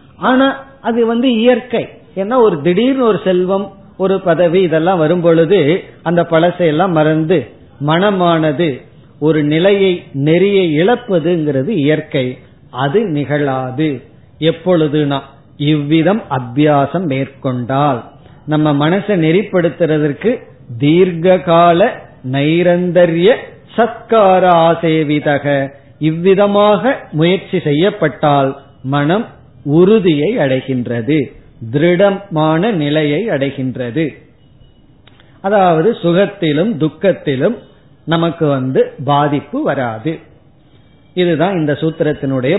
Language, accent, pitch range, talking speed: Tamil, native, 145-180 Hz, 75 wpm